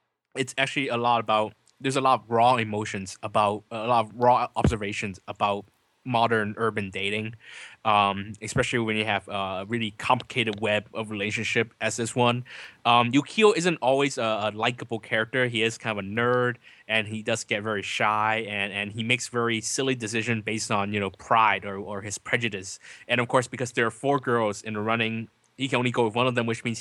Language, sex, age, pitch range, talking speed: English, male, 20-39, 105-125 Hz, 205 wpm